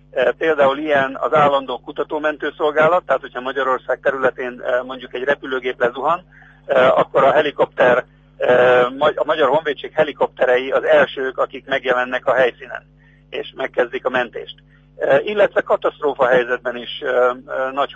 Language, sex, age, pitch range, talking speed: Hungarian, male, 50-69, 125-150 Hz, 115 wpm